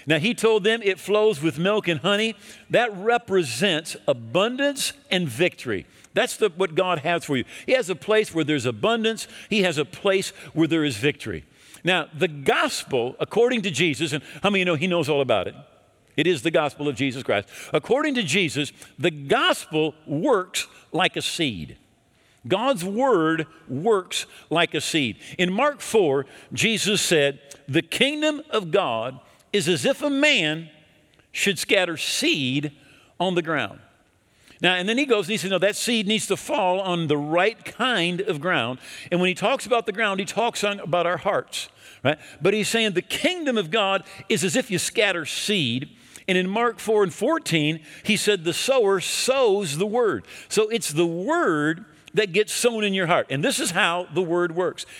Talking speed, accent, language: 190 wpm, American, English